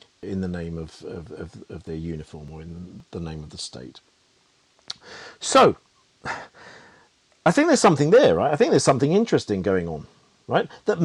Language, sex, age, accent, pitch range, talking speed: English, male, 40-59, British, 100-155 Hz, 175 wpm